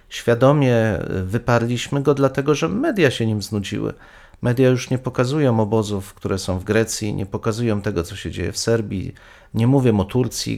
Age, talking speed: 40-59, 170 wpm